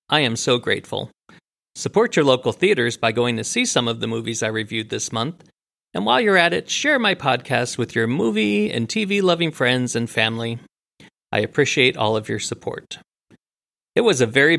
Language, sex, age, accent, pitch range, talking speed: English, male, 40-59, American, 115-165 Hz, 190 wpm